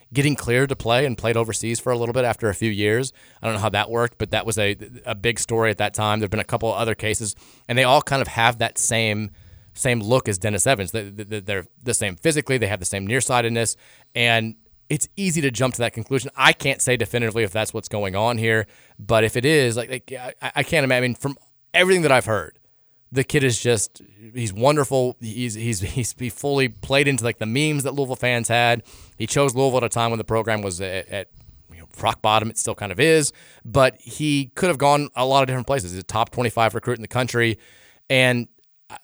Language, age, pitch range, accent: English, 30-49, 110-130 Hz, American